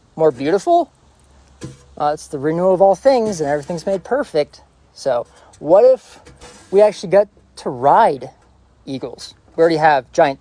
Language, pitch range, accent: English, 125-185 Hz, American